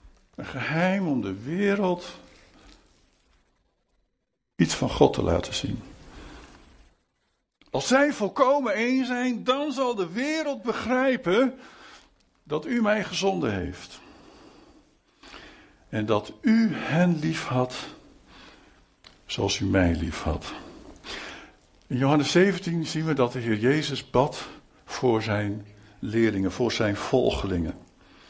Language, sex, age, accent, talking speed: Dutch, male, 60-79, Dutch, 110 wpm